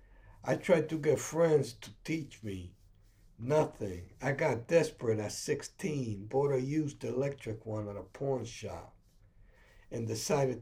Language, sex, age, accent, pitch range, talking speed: English, male, 60-79, American, 105-135 Hz, 140 wpm